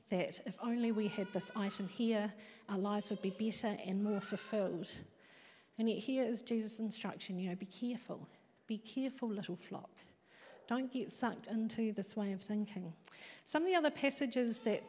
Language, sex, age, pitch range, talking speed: English, female, 40-59, 200-245 Hz, 175 wpm